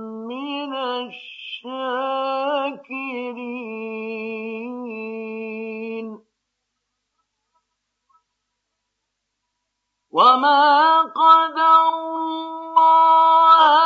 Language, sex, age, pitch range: Arabic, male, 50-69, 245-320 Hz